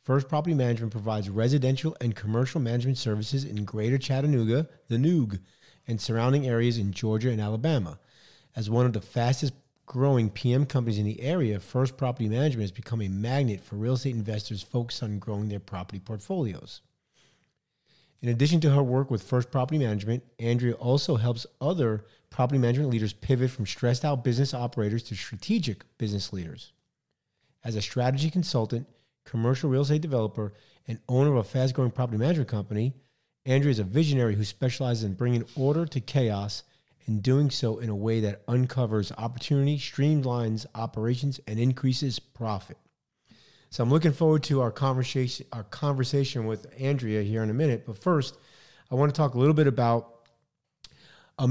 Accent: American